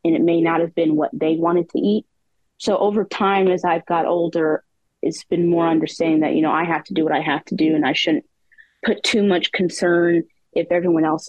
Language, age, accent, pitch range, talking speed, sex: English, 20-39, American, 165-185 Hz, 235 wpm, female